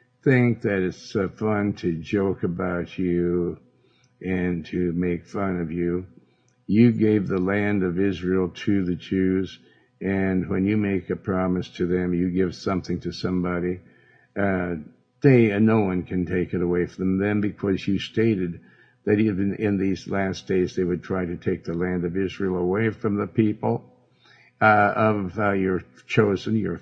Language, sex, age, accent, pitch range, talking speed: English, male, 60-79, American, 90-105 Hz, 170 wpm